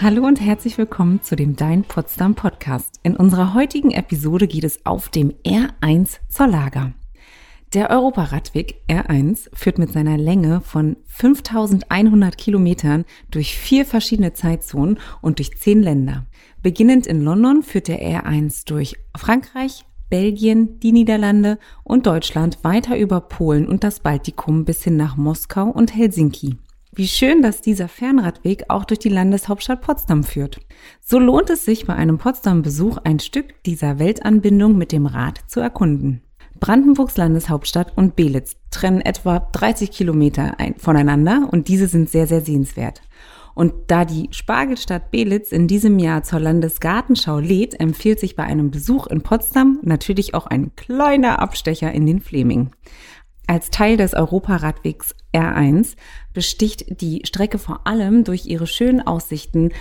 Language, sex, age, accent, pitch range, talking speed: German, female, 30-49, German, 155-220 Hz, 145 wpm